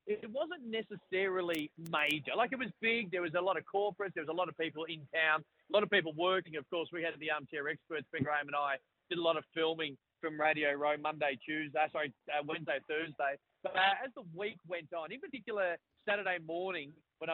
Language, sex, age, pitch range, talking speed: English, male, 30-49, 155-190 Hz, 220 wpm